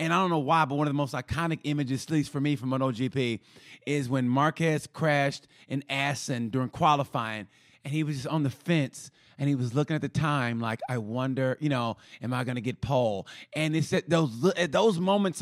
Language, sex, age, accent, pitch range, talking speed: English, male, 30-49, American, 135-170 Hz, 225 wpm